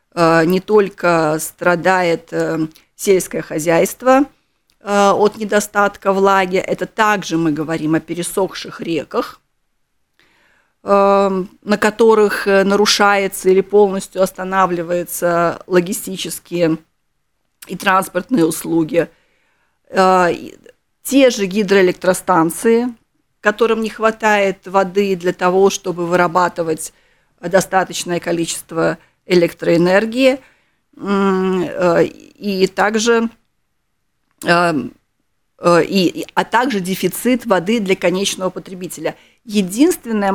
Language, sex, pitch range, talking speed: Russian, female, 170-205 Hz, 70 wpm